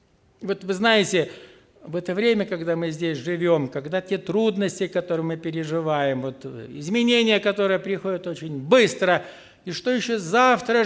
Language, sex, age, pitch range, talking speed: Russian, male, 60-79, 175-240 Hz, 140 wpm